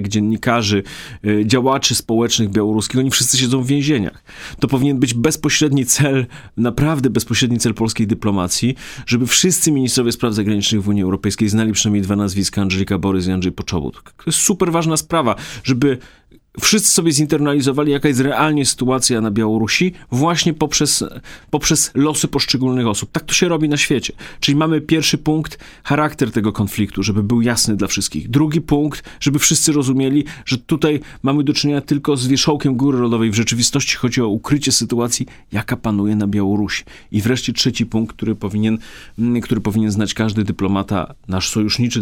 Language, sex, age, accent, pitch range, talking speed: Polish, male, 30-49, native, 105-140 Hz, 160 wpm